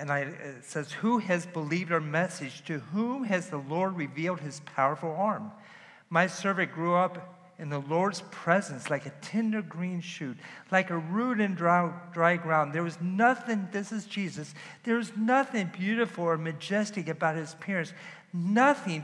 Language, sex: English, male